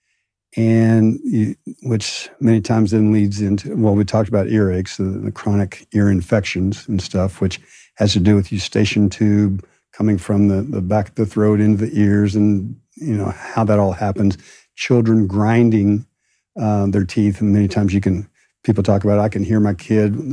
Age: 60-79